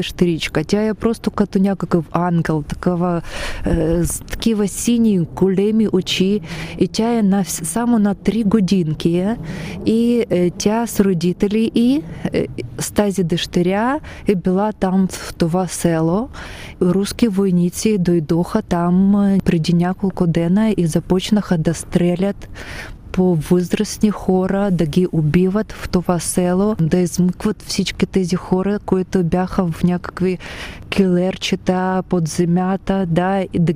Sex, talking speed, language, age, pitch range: female, 120 wpm, Bulgarian, 20-39, 175-205 Hz